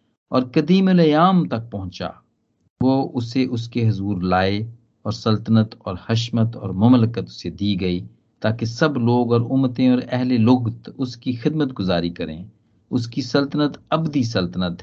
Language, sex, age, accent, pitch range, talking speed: Hindi, male, 50-69, native, 100-130 Hz, 140 wpm